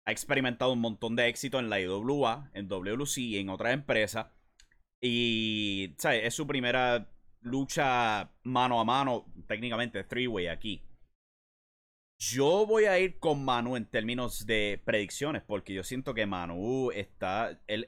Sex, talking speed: male, 150 wpm